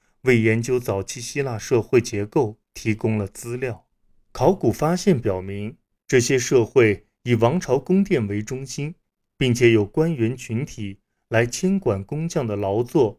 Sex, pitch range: male, 105-135 Hz